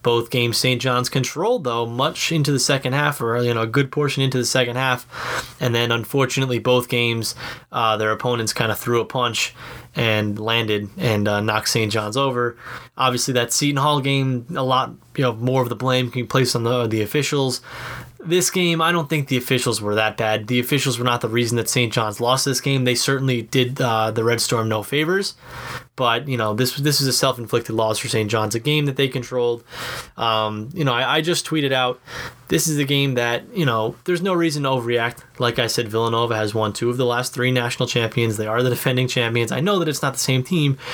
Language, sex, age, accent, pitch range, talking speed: English, male, 20-39, American, 115-140 Hz, 230 wpm